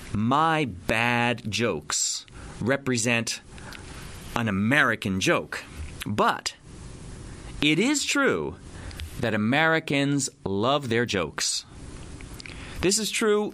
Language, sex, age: Japanese, male, 30-49